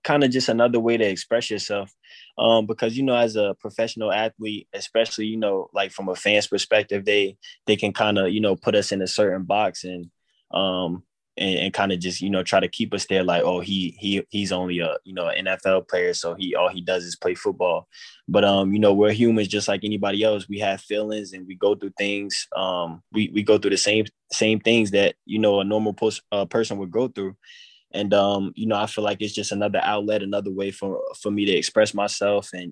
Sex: male